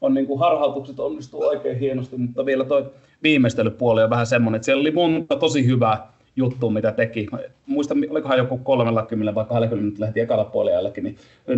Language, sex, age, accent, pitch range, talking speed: Finnish, male, 30-49, native, 115-140 Hz, 185 wpm